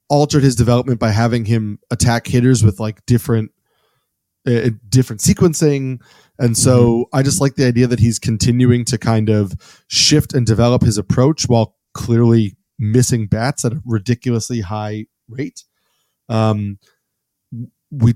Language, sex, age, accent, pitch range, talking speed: English, male, 20-39, American, 110-130 Hz, 140 wpm